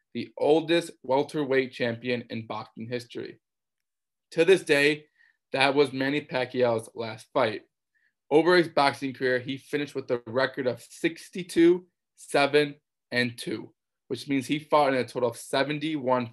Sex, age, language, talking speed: male, 20-39, English, 140 wpm